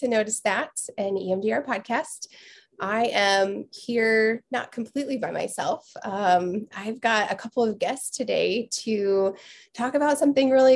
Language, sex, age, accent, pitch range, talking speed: English, female, 20-39, American, 180-225 Hz, 145 wpm